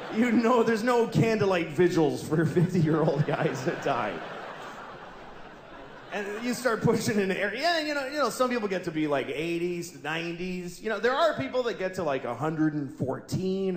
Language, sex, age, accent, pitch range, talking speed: English, male, 30-49, American, 140-200 Hz, 185 wpm